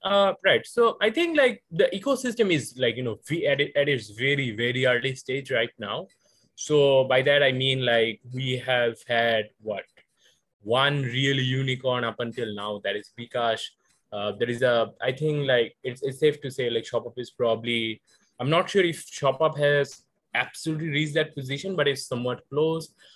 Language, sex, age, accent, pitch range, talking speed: English, male, 20-39, Indian, 125-160 Hz, 180 wpm